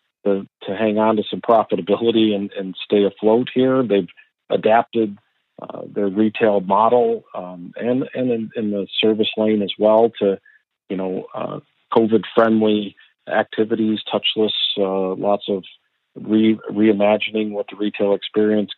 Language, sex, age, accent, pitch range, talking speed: English, male, 50-69, American, 100-115 Hz, 145 wpm